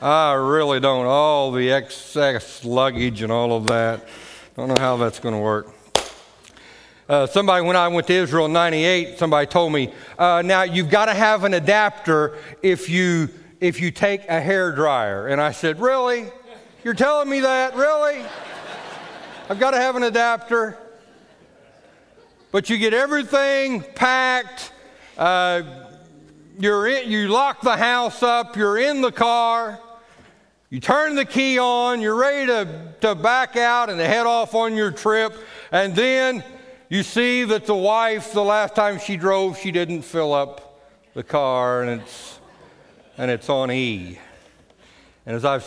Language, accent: English, American